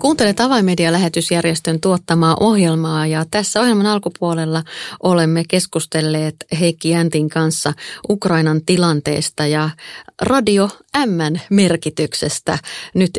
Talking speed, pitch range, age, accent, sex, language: 90 wpm, 155-190 Hz, 30-49, native, female, Finnish